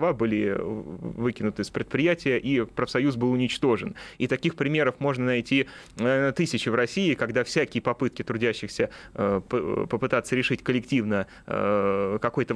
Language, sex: Russian, male